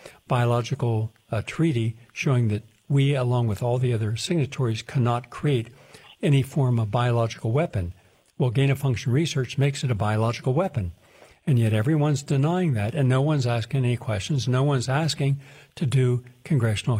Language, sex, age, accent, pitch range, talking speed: English, male, 60-79, American, 115-145 Hz, 155 wpm